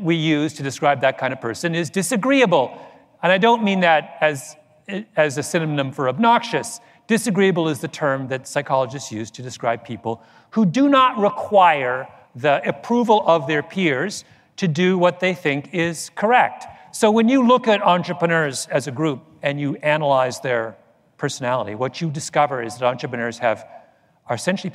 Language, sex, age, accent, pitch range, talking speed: English, male, 40-59, American, 125-165 Hz, 170 wpm